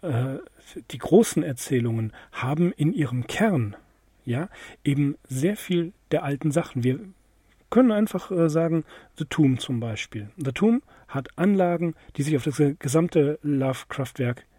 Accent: German